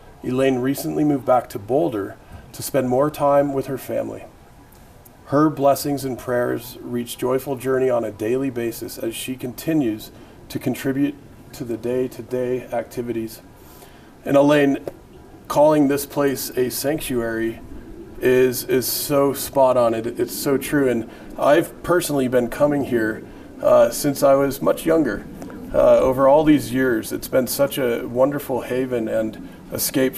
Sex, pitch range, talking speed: male, 120-150 Hz, 145 wpm